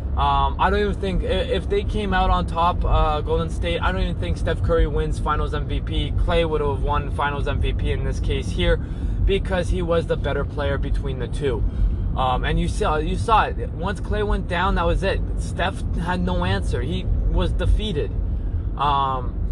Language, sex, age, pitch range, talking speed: English, male, 20-39, 85-125 Hz, 195 wpm